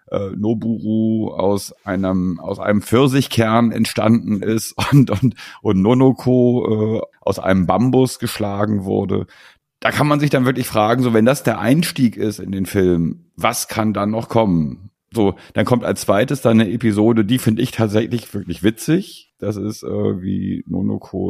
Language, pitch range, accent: German, 100-120 Hz, German